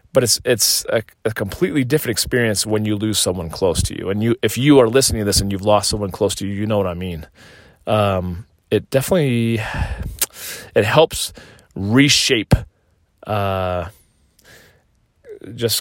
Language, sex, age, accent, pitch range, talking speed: English, male, 30-49, American, 100-115 Hz, 165 wpm